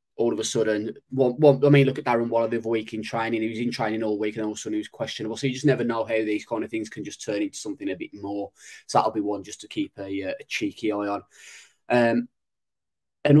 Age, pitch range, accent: 10-29, 110-130 Hz, British